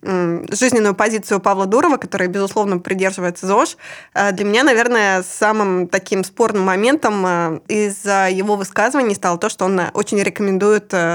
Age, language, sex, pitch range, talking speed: 20-39, Russian, female, 185-215 Hz, 130 wpm